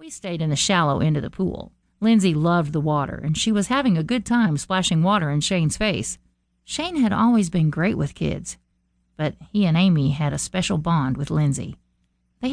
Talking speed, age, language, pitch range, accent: 205 wpm, 50-69, English, 150-190 Hz, American